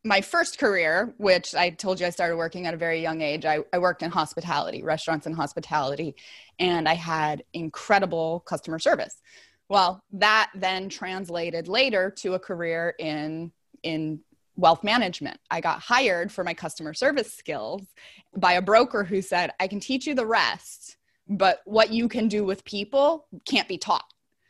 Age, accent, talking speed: 20-39, American, 170 wpm